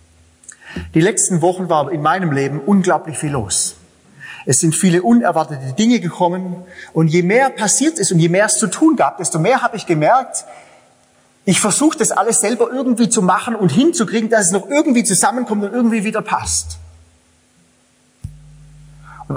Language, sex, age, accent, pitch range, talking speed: German, male, 30-49, German, 125-185 Hz, 165 wpm